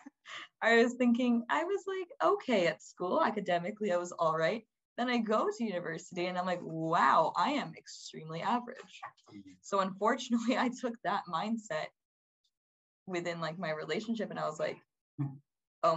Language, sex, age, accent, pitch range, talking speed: English, female, 20-39, American, 160-220 Hz, 160 wpm